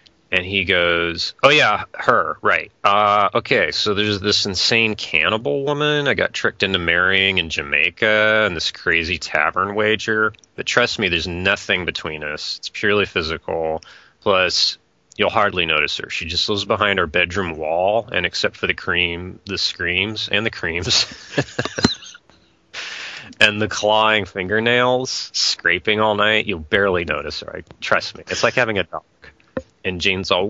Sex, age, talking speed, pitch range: male, 30-49, 160 wpm, 90-110 Hz